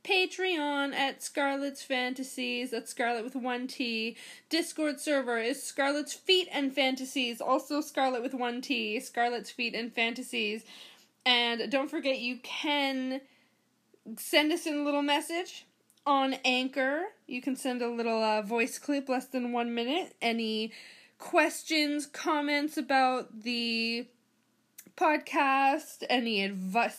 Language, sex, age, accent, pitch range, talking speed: English, female, 20-39, American, 240-285 Hz, 130 wpm